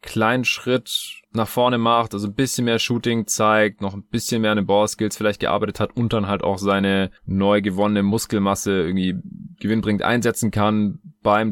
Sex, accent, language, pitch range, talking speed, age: male, German, German, 90-105 Hz, 175 wpm, 20-39